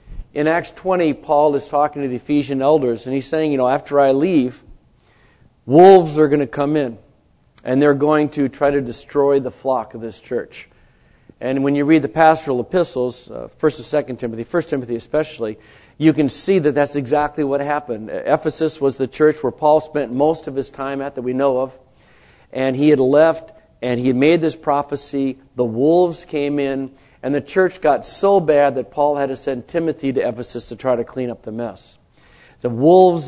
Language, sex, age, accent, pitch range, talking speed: English, male, 50-69, American, 125-155 Hz, 200 wpm